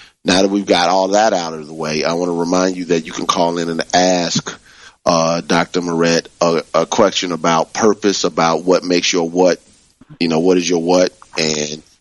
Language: English